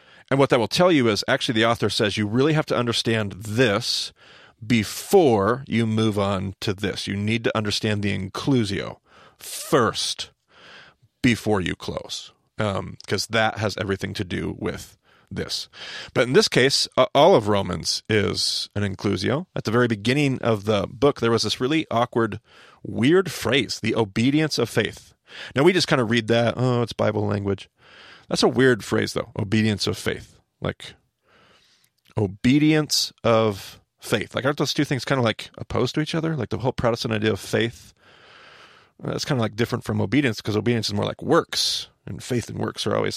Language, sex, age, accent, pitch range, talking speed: English, male, 30-49, American, 105-130 Hz, 180 wpm